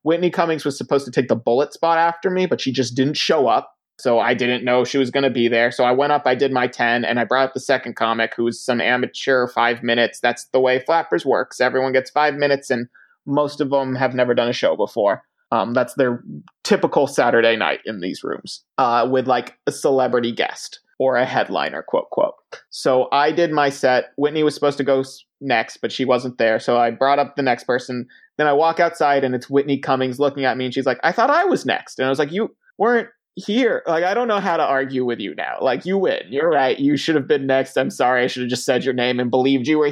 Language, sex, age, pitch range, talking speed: English, male, 30-49, 125-145 Hz, 250 wpm